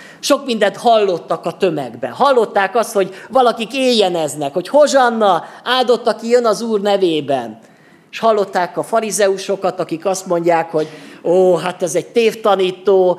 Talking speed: 140 wpm